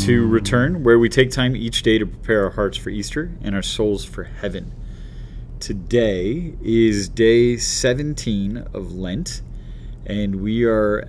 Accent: American